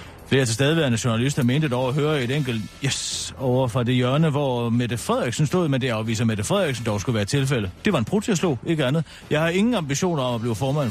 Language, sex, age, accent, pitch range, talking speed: Danish, male, 40-59, native, 110-155 Hz, 240 wpm